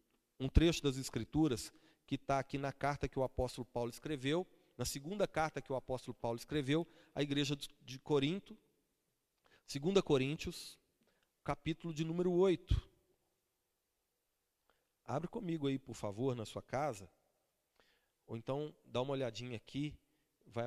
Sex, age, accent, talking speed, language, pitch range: male, 40-59, Brazilian, 135 wpm, Portuguese, 125-170 Hz